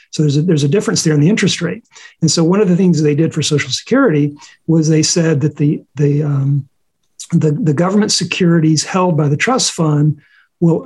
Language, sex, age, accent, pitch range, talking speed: English, male, 50-69, American, 155-190 Hz, 200 wpm